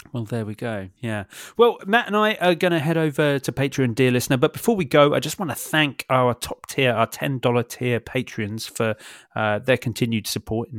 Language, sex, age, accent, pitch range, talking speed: English, male, 30-49, British, 130-180 Hz, 220 wpm